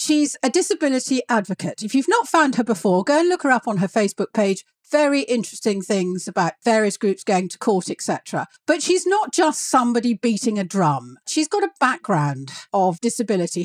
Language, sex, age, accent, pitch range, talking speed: English, female, 50-69, British, 190-260 Hz, 190 wpm